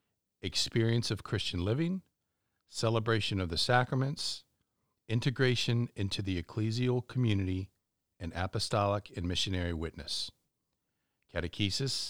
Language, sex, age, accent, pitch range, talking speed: English, male, 50-69, American, 95-115 Hz, 95 wpm